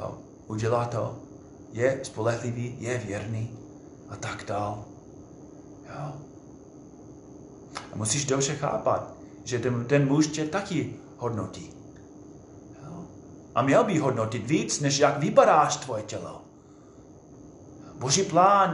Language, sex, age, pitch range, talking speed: Czech, male, 30-49, 120-155 Hz, 110 wpm